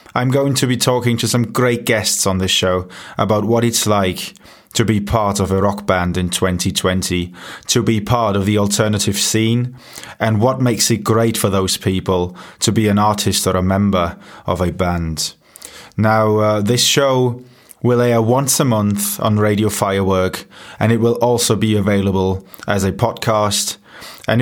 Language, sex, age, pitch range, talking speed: English, male, 20-39, 95-115 Hz, 175 wpm